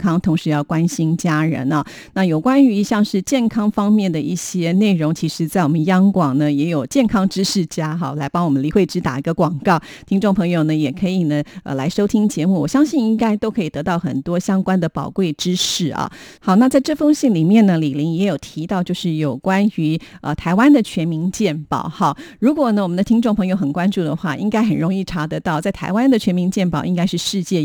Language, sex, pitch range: Chinese, female, 160-205 Hz